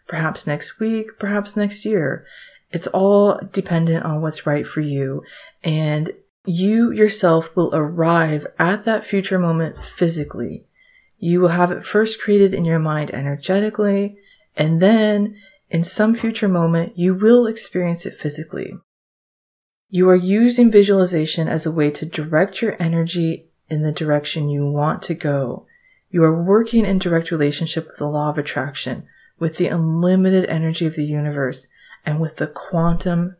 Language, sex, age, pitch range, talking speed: English, female, 30-49, 155-200 Hz, 155 wpm